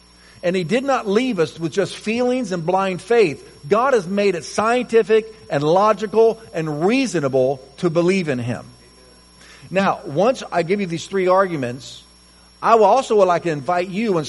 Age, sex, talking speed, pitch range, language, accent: 50-69, male, 170 wpm, 140-210 Hz, English, American